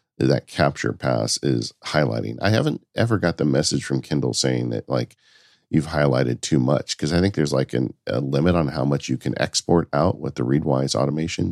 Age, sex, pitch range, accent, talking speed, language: 40-59, male, 65-85 Hz, American, 205 wpm, English